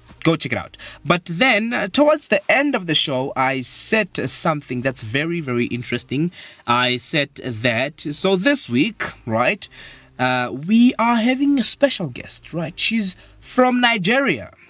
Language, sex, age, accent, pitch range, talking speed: English, male, 20-39, South African, 125-190 Hz, 160 wpm